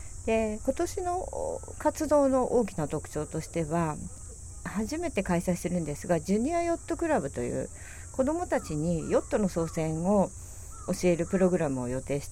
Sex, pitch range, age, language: female, 140-215 Hz, 50-69, Japanese